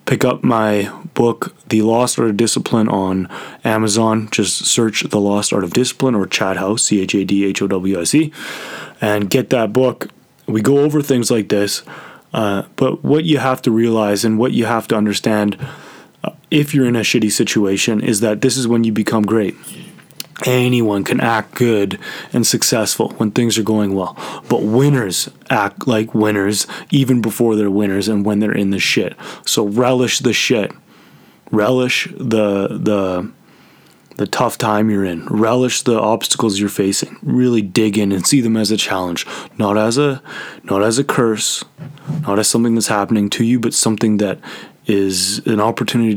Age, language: 20-39, English